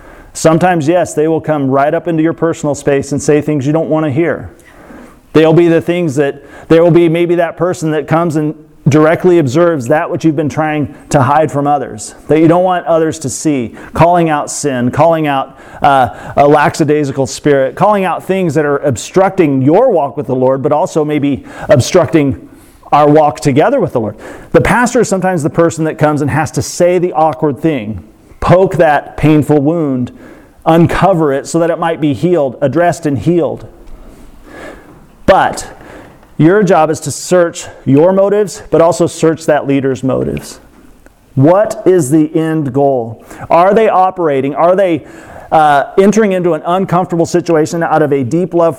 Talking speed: 180 wpm